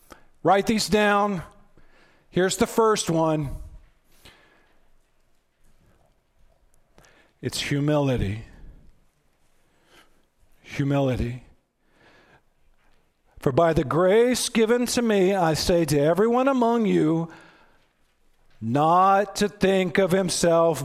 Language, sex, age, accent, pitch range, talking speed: English, male, 50-69, American, 150-205 Hz, 80 wpm